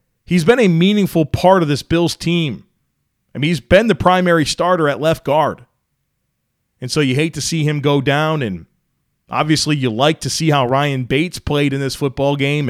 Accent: American